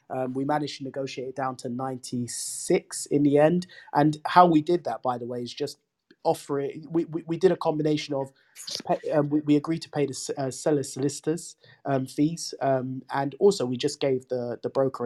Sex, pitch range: male, 130-150 Hz